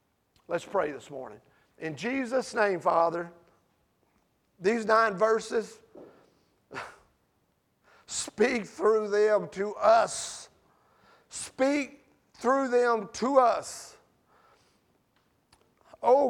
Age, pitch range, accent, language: 50-69, 205-250 Hz, American, English